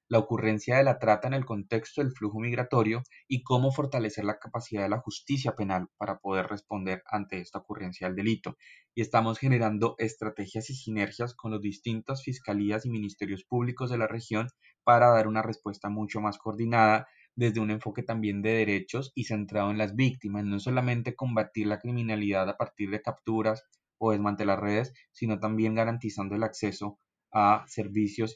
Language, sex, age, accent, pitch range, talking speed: Spanish, male, 20-39, Colombian, 100-115 Hz, 170 wpm